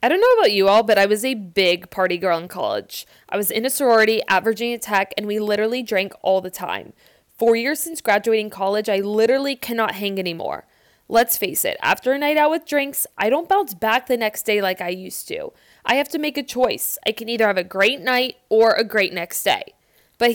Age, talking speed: 20-39, 235 wpm